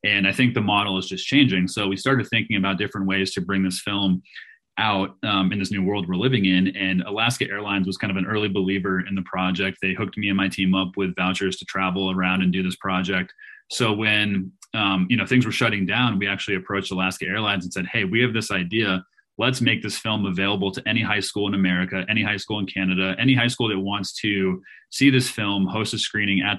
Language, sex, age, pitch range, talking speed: English, male, 30-49, 95-110 Hz, 240 wpm